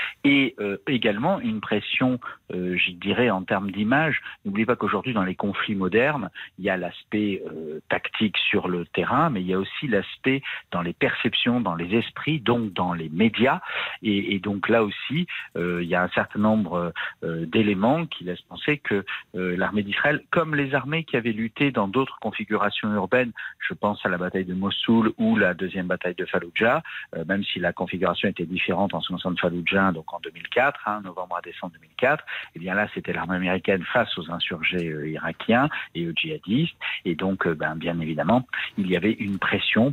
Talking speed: 200 wpm